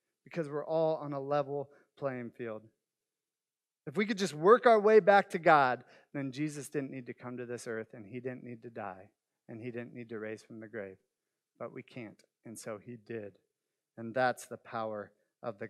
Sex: male